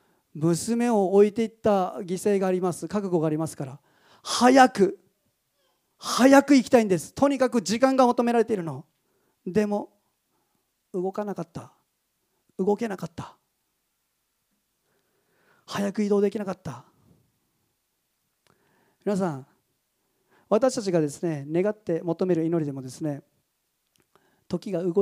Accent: native